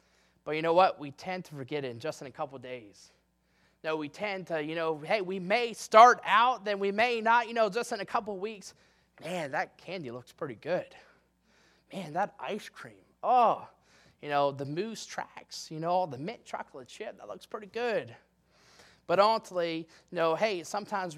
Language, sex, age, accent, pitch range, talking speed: English, male, 20-39, American, 145-210 Hz, 215 wpm